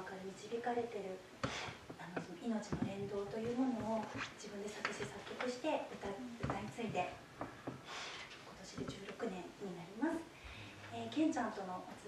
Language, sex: Japanese, female